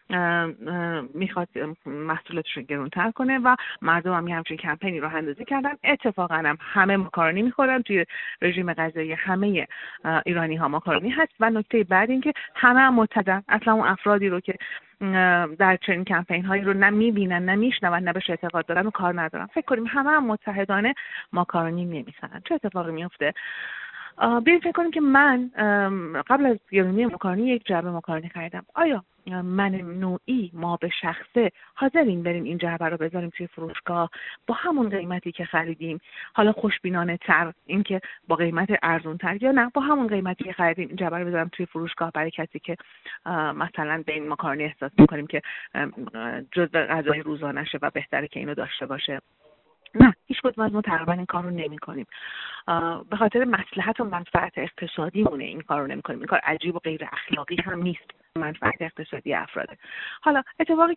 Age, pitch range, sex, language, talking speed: 30-49, 165-220 Hz, female, Persian, 165 wpm